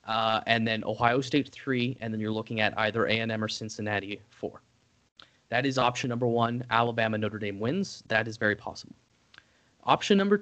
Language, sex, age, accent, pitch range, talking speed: English, male, 20-39, American, 110-130 Hz, 175 wpm